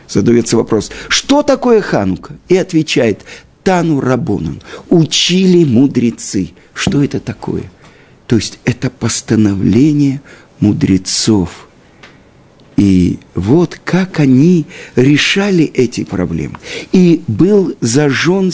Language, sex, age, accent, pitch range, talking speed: Russian, male, 50-69, native, 120-180 Hz, 95 wpm